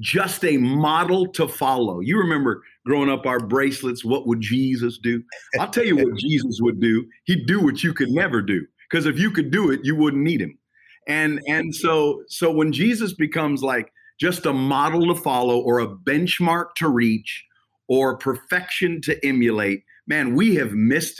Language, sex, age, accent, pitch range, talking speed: English, male, 50-69, American, 125-175 Hz, 185 wpm